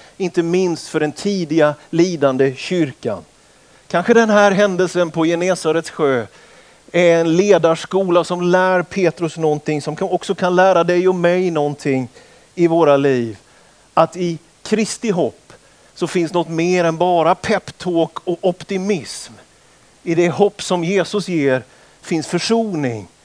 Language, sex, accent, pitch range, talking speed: Swedish, male, native, 150-185 Hz, 135 wpm